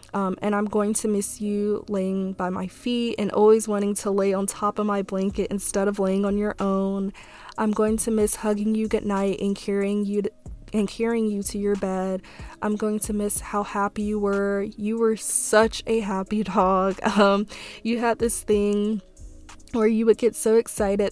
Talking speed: 200 wpm